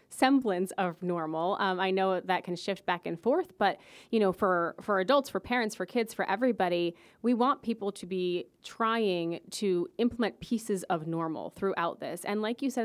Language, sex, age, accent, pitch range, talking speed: English, female, 30-49, American, 175-215 Hz, 190 wpm